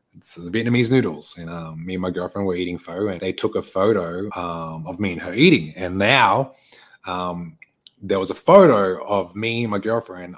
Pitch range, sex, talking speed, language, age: 90-105 Hz, male, 210 wpm, English, 20-39